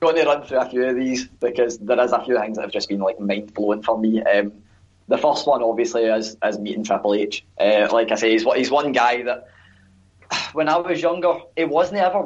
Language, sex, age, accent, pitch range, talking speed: English, male, 10-29, British, 105-125 Hz, 240 wpm